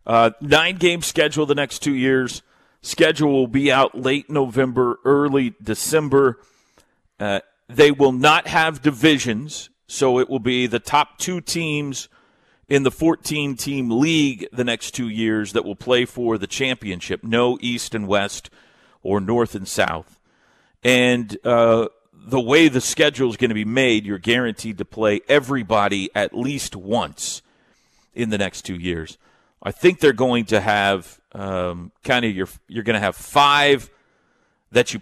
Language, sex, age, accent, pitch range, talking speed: English, male, 40-59, American, 105-140 Hz, 160 wpm